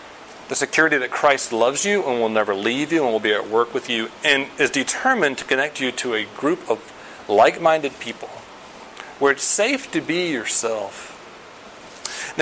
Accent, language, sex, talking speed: American, English, male, 185 wpm